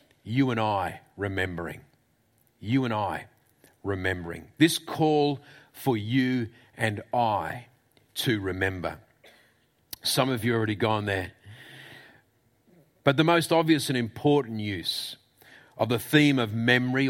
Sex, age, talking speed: male, 40-59, 125 wpm